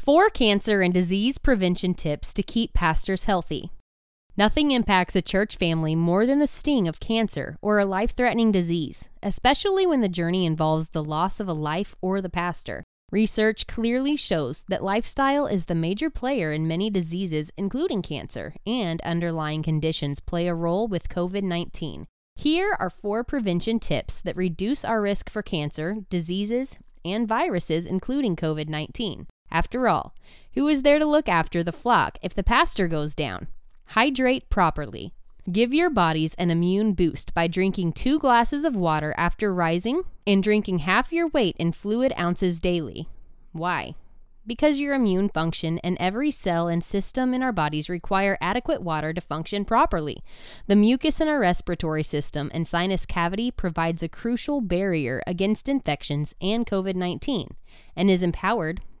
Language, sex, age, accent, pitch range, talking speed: English, female, 20-39, American, 170-230 Hz, 160 wpm